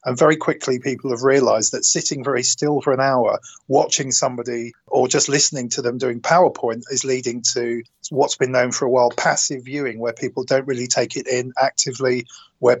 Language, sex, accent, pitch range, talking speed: English, male, British, 120-140 Hz, 195 wpm